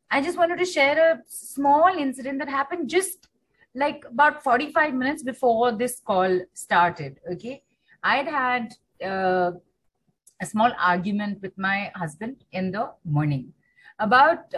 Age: 30-49